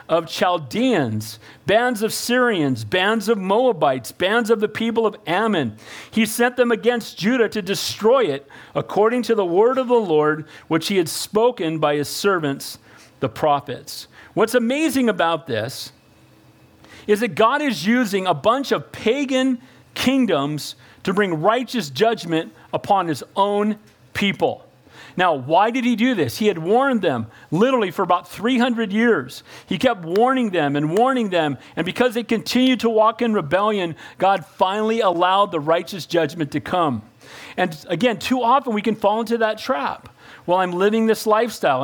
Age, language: 40-59, English